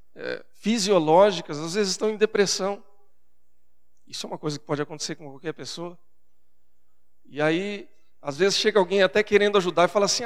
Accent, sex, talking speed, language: Brazilian, male, 170 wpm, Portuguese